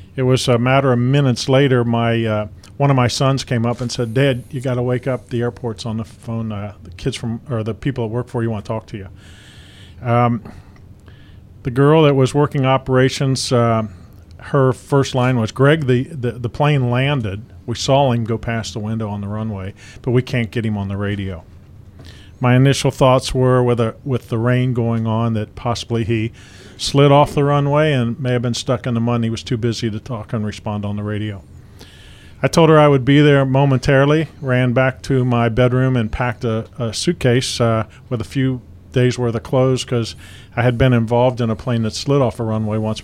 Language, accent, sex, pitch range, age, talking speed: English, American, male, 105-130 Hz, 40-59, 220 wpm